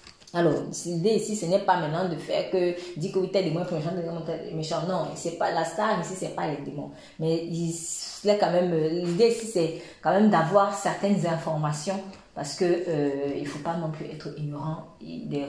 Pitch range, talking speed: 165-205 Hz, 205 wpm